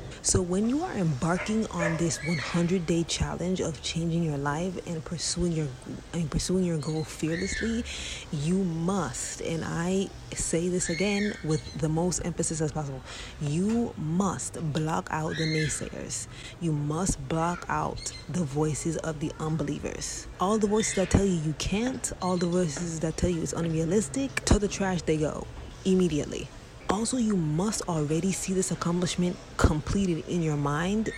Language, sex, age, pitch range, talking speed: English, female, 20-39, 155-185 Hz, 160 wpm